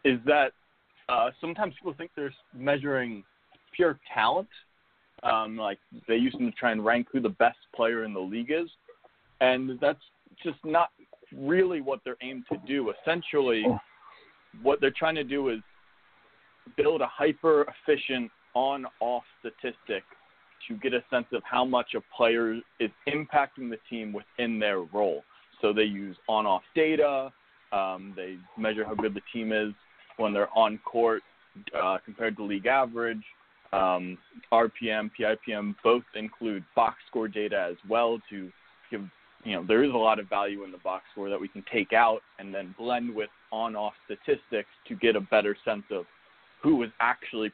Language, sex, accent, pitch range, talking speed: English, male, American, 105-140 Hz, 165 wpm